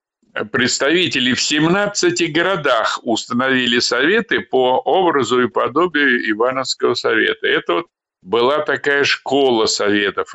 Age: 50-69